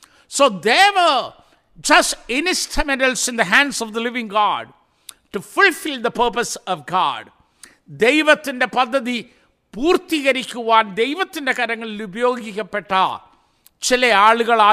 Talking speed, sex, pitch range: 115 wpm, male, 205-275 Hz